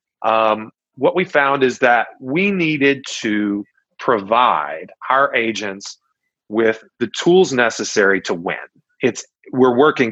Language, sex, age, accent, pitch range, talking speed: English, male, 30-49, American, 110-145 Hz, 125 wpm